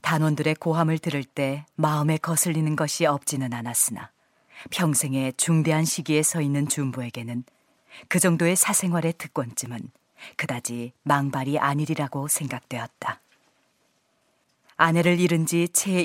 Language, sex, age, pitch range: Korean, female, 40-59, 130-165 Hz